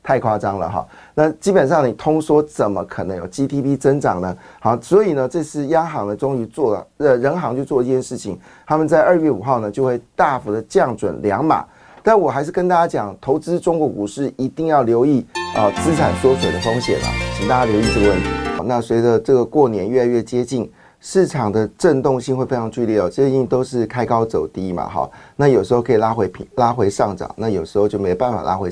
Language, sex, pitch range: Chinese, male, 105-140 Hz